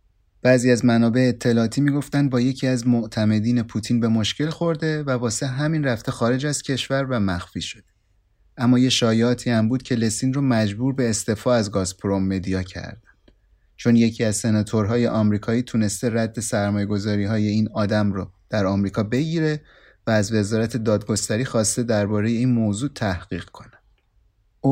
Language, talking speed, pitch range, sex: Persian, 155 wpm, 110-130 Hz, male